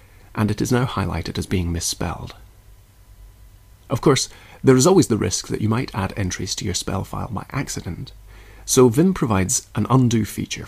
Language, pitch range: English, 100-115 Hz